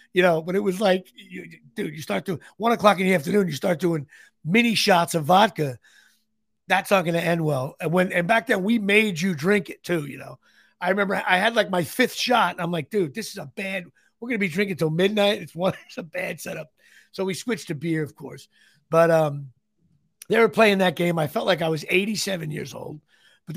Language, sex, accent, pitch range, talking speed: English, male, American, 165-225 Hz, 240 wpm